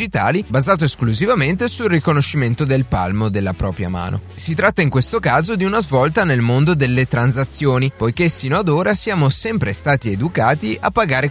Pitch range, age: 115-170 Hz, 30-49